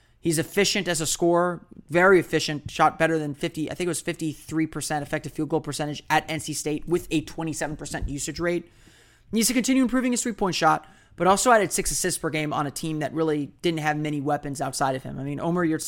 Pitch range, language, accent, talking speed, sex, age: 145-175 Hz, English, American, 220 wpm, male, 20-39